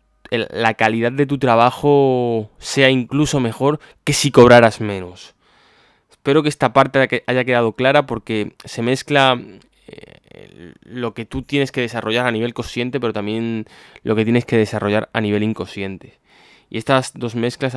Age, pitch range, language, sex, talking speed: 10-29, 105-125 Hz, Spanish, male, 150 wpm